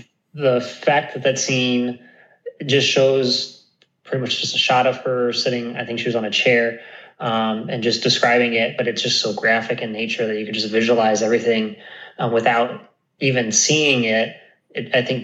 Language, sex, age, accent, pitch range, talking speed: English, male, 20-39, American, 115-130 Hz, 190 wpm